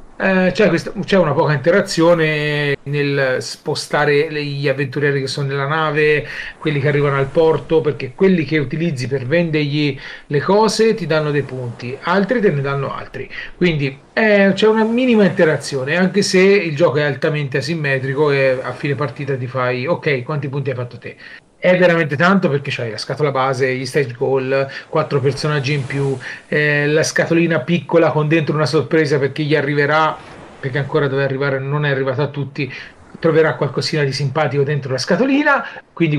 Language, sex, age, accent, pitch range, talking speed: Italian, male, 40-59, native, 140-175 Hz, 170 wpm